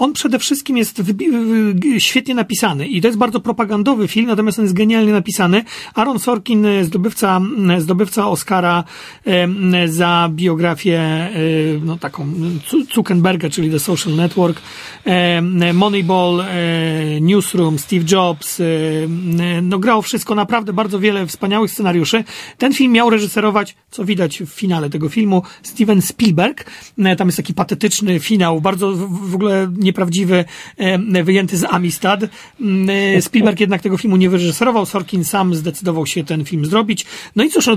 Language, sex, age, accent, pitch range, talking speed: Polish, male, 40-59, native, 175-215 Hz, 135 wpm